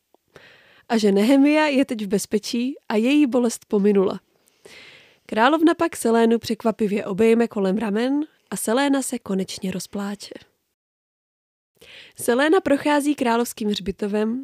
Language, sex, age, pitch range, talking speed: Czech, female, 20-39, 210-285 Hz, 110 wpm